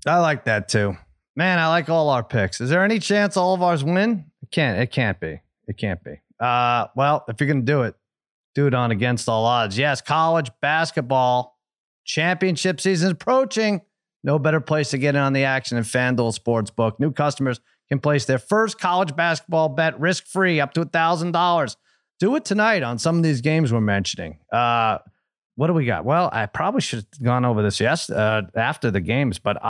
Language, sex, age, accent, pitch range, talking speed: English, male, 30-49, American, 125-170 Hz, 205 wpm